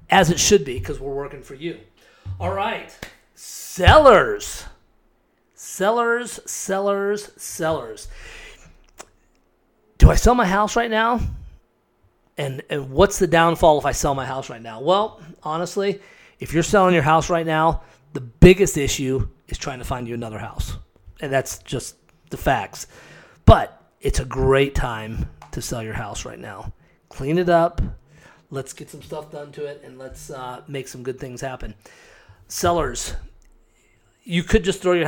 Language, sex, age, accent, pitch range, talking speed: English, male, 30-49, American, 125-170 Hz, 160 wpm